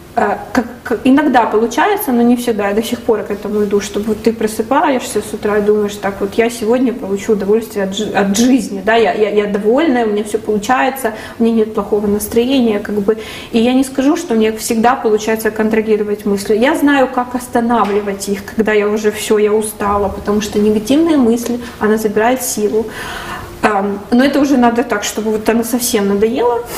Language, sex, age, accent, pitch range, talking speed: Russian, female, 20-39, native, 210-245 Hz, 190 wpm